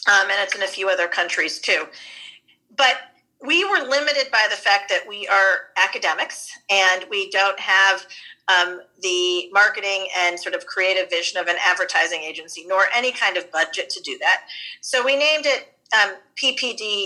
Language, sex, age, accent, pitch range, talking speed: English, female, 40-59, American, 185-240 Hz, 175 wpm